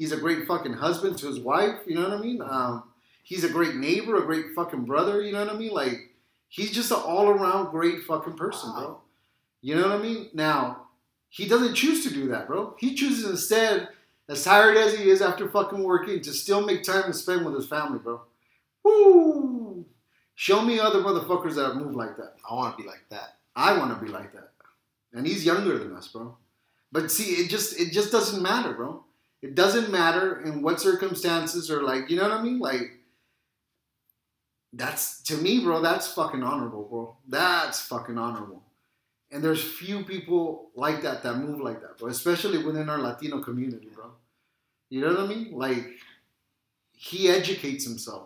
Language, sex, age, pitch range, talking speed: English, male, 30-49, 135-200 Hz, 195 wpm